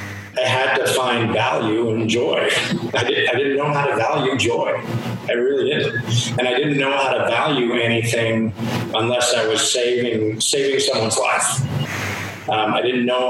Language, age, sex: English, 40-59, male